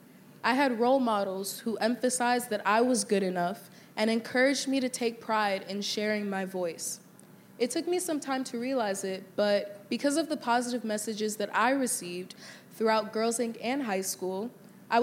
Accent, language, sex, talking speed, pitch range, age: American, English, female, 180 wpm, 200-245 Hz, 20-39